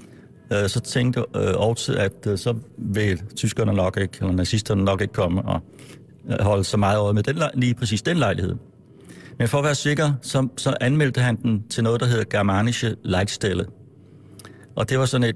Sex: male